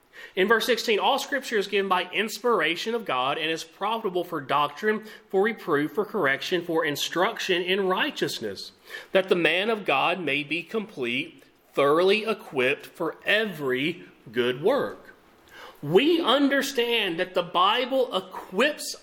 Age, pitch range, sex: 30-49, 165-245 Hz, male